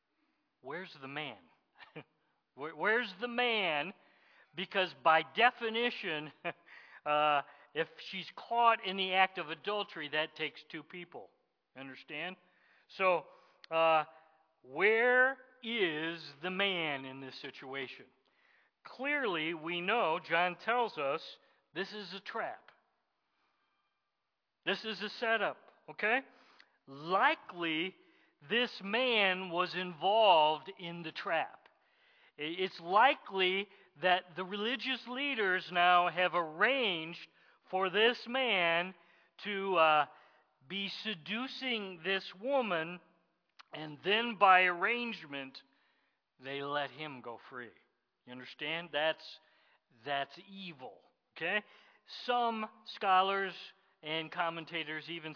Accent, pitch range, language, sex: American, 160-220 Hz, English, male